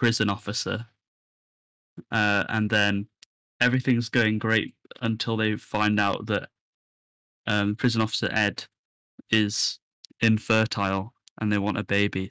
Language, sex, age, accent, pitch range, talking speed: English, male, 10-29, British, 100-115 Hz, 115 wpm